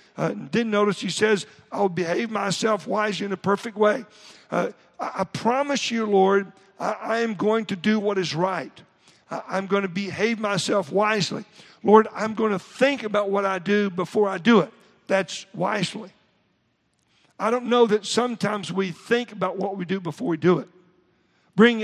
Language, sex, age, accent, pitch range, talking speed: English, male, 50-69, American, 185-220 Hz, 180 wpm